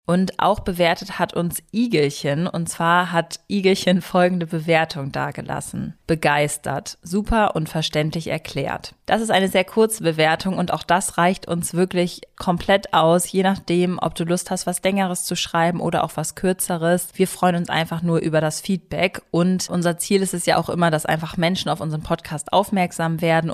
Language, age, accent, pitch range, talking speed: German, 20-39, German, 155-180 Hz, 180 wpm